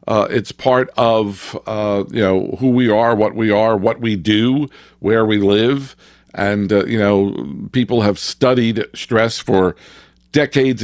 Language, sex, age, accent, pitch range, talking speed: English, male, 50-69, American, 105-130 Hz, 160 wpm